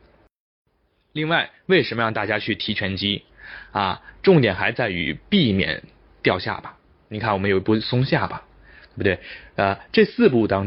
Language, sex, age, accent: Chinese, male, 20-39, native